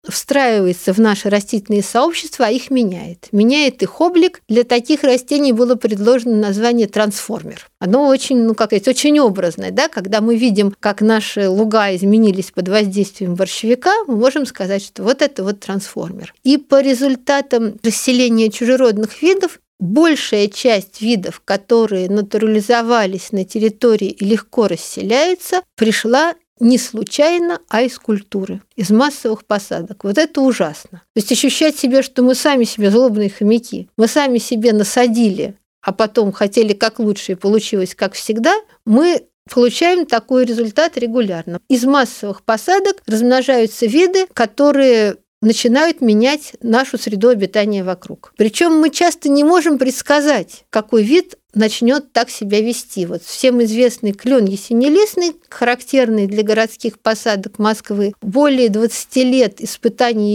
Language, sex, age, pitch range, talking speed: Russian, female, 50-69, 210-265 Hz, 135 wpm